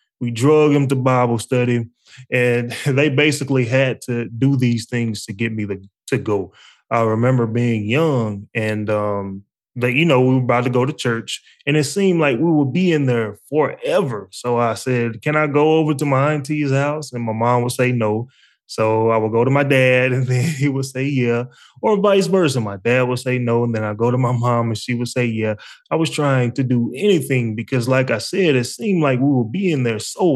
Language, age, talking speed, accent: English, 20-39, 225 wpm, American